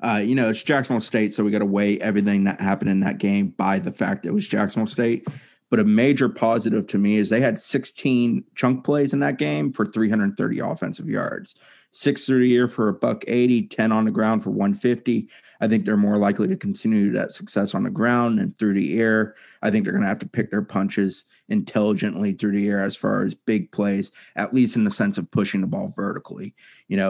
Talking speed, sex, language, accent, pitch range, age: 230 wpm, male, English, American, 100-130 Hz, 30-49